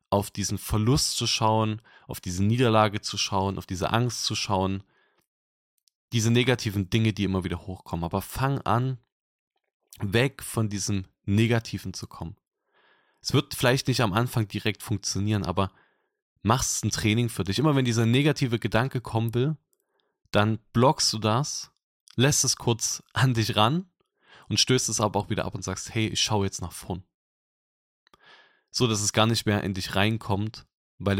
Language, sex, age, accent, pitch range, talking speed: German, male, 20-39, German, 100-120 Hz, 165 wpm